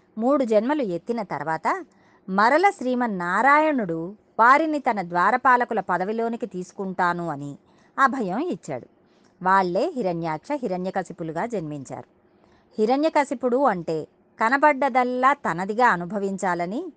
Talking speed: 80 wpm